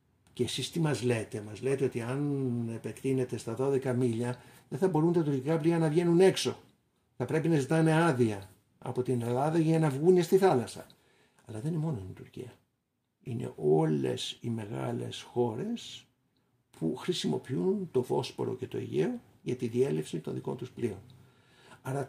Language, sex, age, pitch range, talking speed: Greek, male, 60-79, 115-155 Hz, 165 wpm